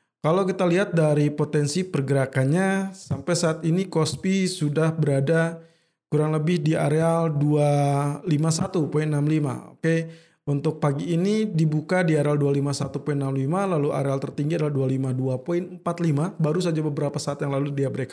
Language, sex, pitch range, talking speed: Indonesian, male, 145-175 Hz, 130 wpm